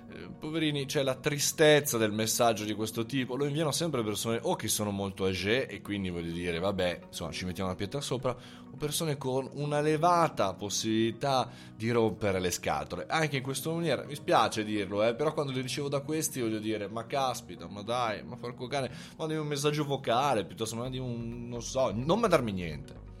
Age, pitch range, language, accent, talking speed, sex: 20-39, 110-150 Hz, Italian, native, 195 wpm, male